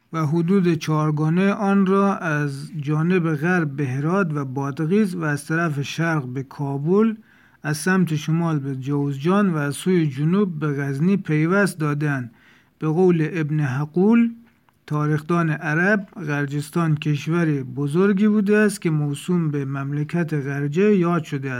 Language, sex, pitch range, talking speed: Persian, male, 145-175 Hz, 135 wpm